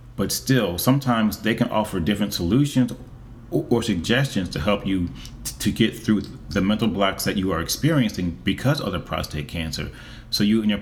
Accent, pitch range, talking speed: American, 85-115 Hz, 175 wpm